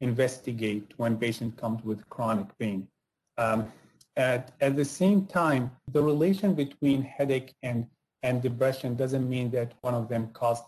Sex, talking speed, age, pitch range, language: male, 150 wpm, 30-49, 115-145 Hz, English